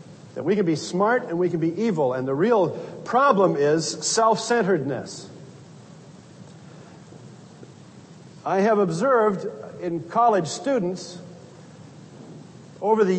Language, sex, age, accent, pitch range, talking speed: English, male, 50-69, American, 155-210 Hz, 110 wpm